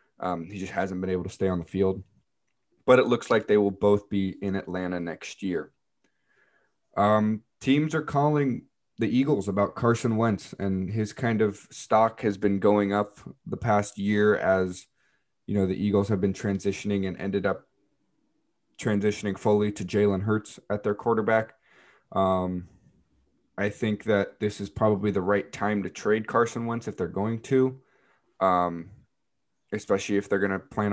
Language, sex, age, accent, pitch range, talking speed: English, male, 20-39, American, 100-115 Hz, 170 wpm